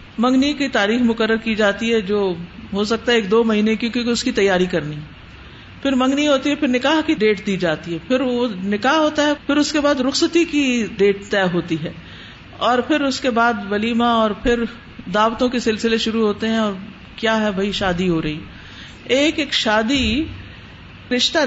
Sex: female